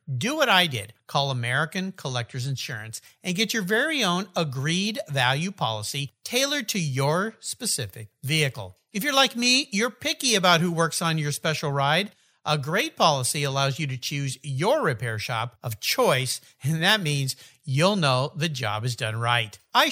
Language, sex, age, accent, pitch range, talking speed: English, male, 50-69, American, 140-230 Hz, 170 wpm